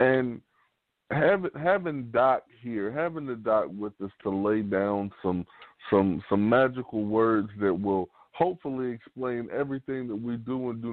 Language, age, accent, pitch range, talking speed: English, 20-39, American, 95-120 Hz, 155 wpm